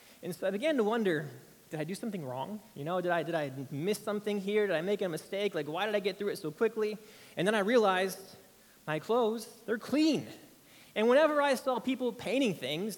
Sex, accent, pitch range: male, American, 190-235 Hz